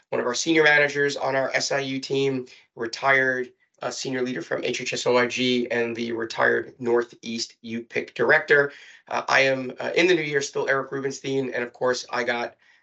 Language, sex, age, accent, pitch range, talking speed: English, male, 30-49, American, 130-165 Hz, 175 wpm